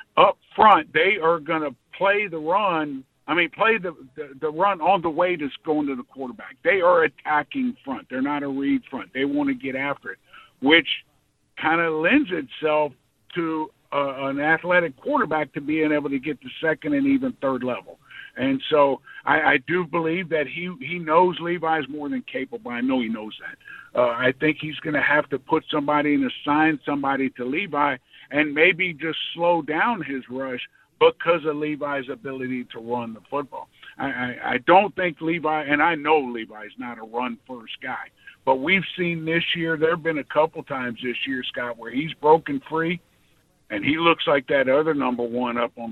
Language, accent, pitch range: English, American, 135-165 Hz